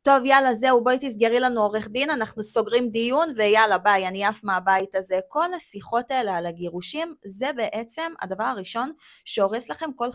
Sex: female